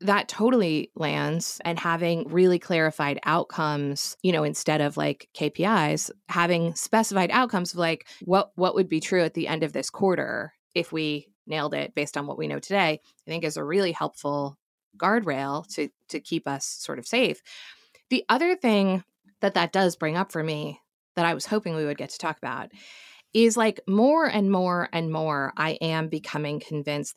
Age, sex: 20-39, female